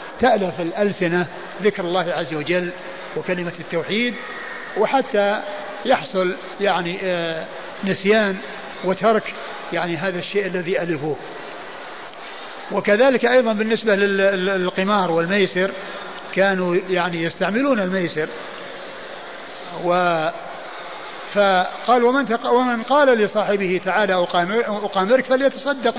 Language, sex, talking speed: Arabic, male, 85 wpm